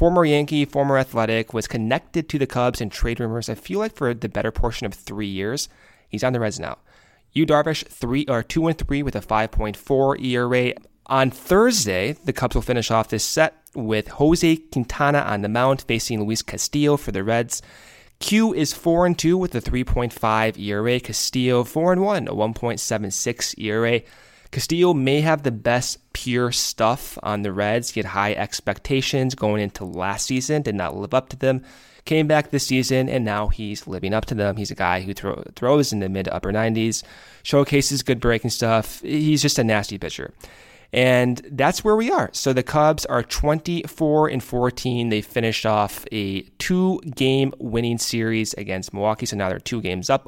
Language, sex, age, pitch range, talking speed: English, male, 20-39, 110-140 Hz, 190 wpm